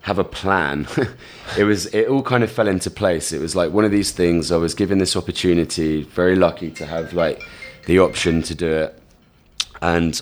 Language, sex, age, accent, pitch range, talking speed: English, male, 20-39, British, 80-95 Hz, 205 wpm